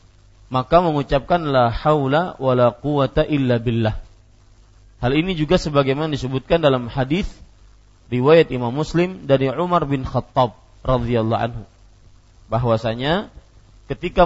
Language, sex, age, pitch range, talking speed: Malay, male, 40-59, 110-155 Hz, 110 wpm